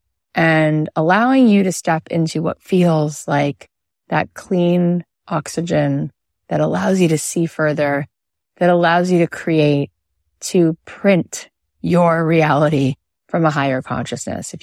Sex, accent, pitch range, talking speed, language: female, American, 140-175 Hz, 130 wpm, English